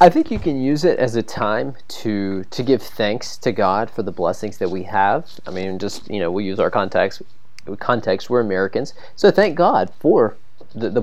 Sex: male